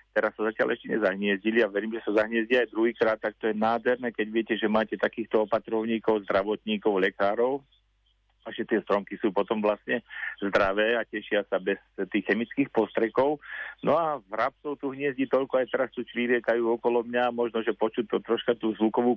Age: 40-59